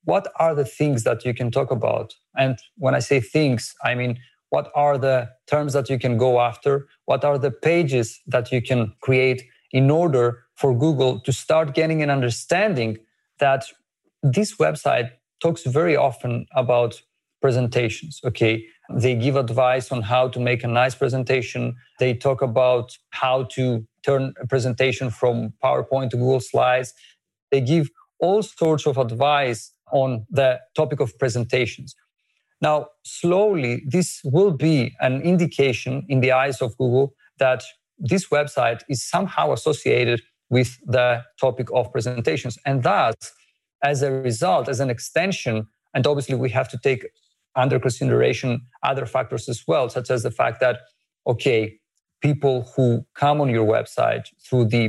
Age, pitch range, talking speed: 40-59, 125-140 Hz, 155 wpm